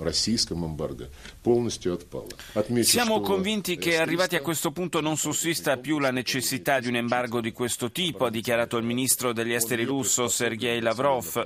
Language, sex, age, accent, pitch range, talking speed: Italian, male, 30-49, native, 100-140 Hz, 140 wpm